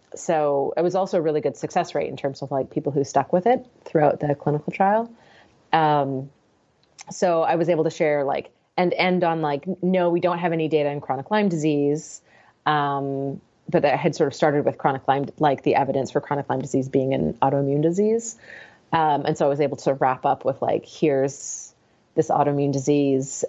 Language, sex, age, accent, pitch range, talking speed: English, female, 30-49, American, 145-180 Hz, 205 wpm